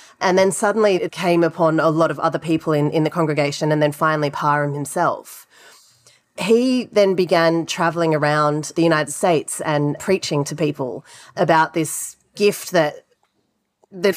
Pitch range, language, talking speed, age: 155-185 Hz, English, 155 wpm, 30-49